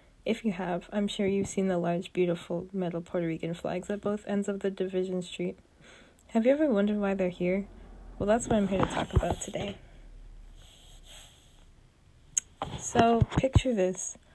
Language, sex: English, female